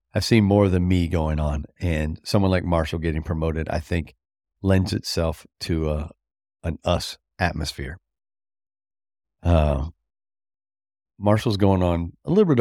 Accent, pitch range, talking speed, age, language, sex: American, 80-100 Hz, 140 wpm, 40-59, English, male